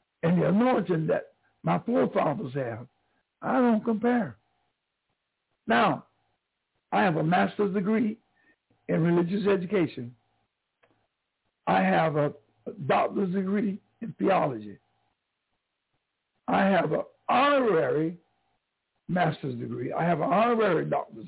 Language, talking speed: English, 105 wpm